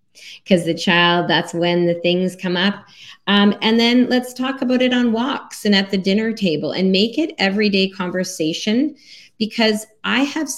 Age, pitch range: 30-49, 180-220 Hz